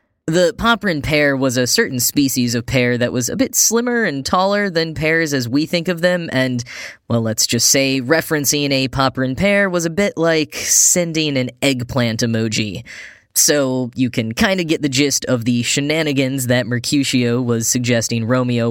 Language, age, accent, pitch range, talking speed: English, 10-29, American, 125-160 Hz, 180 wpm